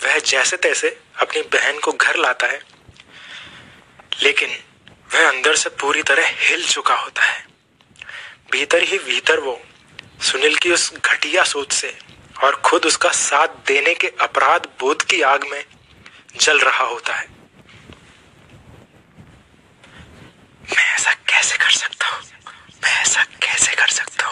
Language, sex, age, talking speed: Hindi, male, 30-49, 135 wpm